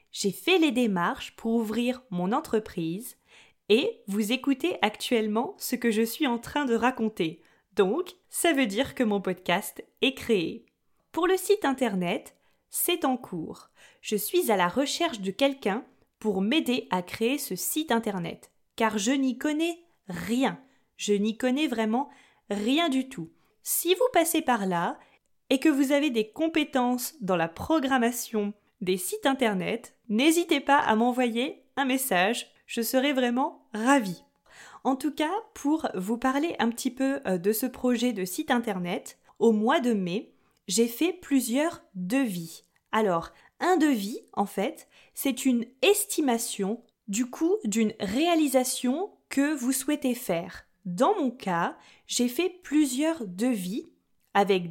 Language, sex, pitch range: French, female, 210-290 Hz